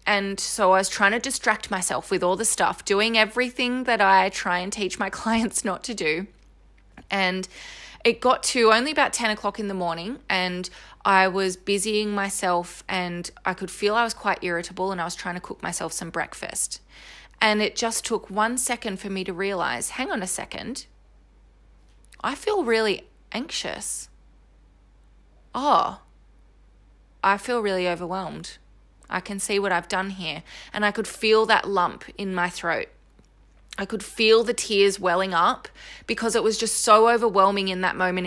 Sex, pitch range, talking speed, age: female, 185-220 Hz, 175 wpm, 20-39